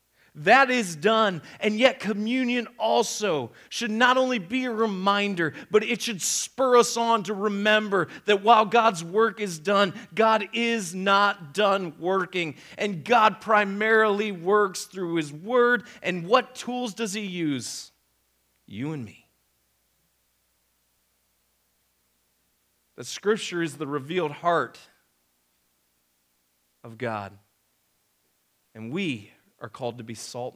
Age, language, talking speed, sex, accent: 40-59, English, 125 wpm, male, American